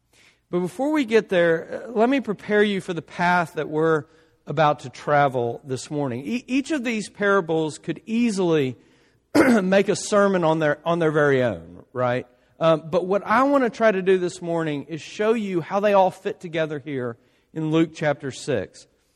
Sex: male